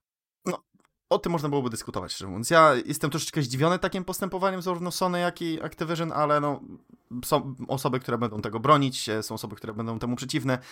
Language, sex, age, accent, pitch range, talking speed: Polish, male, 20-39, native, 120-145 Hz, 160 wpm